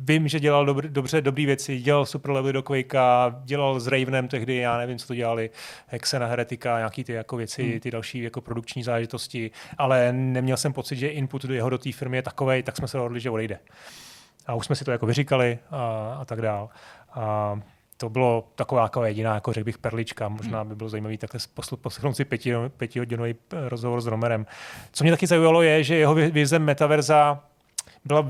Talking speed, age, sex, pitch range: 195 wpm, 30-49, male, 115-135 Hz